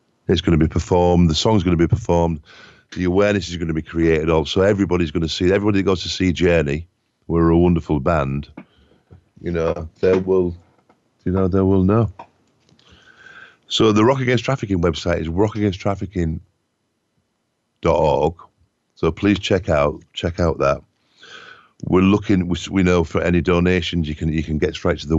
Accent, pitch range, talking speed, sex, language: British, 80-95 Hz, 175 wpm, male, English